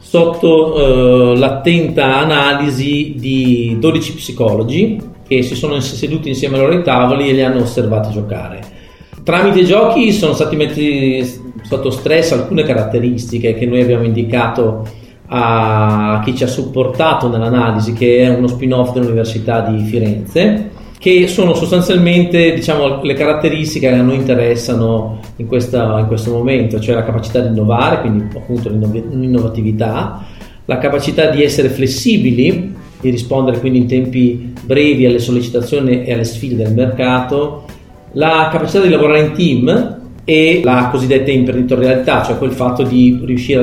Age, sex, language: 40-59, male, Italian